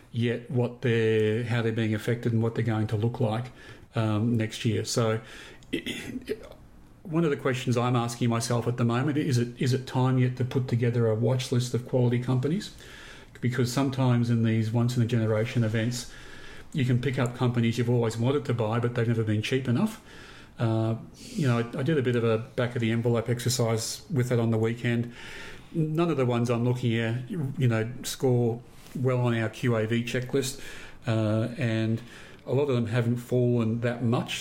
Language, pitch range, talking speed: English, 115-130 Hz, 185 wpm